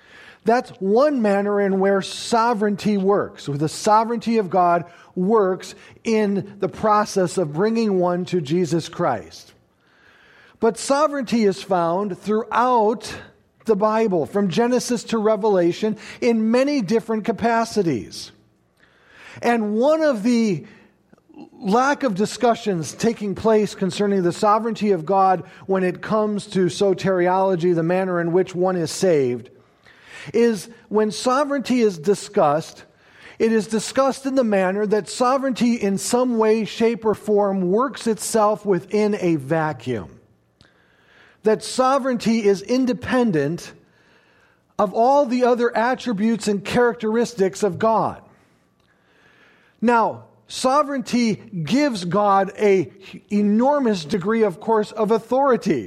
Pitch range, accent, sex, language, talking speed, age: 190-230 Hz, American, male, English, 120 wpm, 40-59